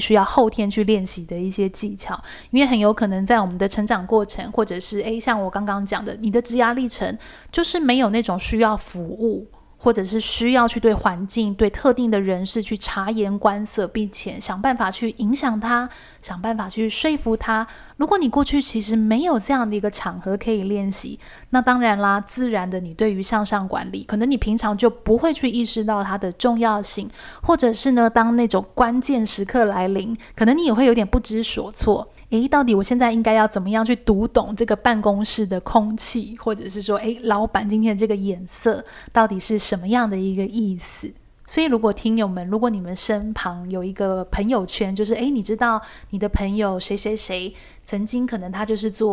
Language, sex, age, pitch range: Chinese, female, 20-39, 200-235 Hz